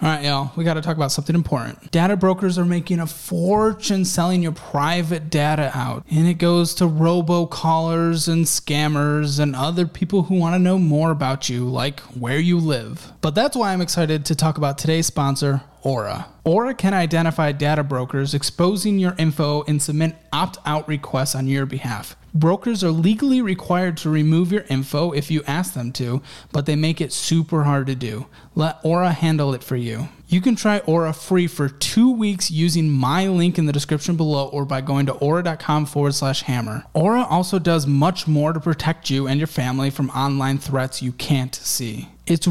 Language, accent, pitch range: English, American, 145-175 Hz